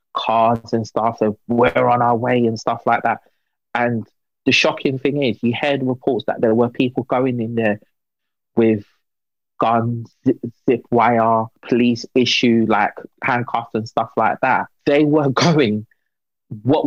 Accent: British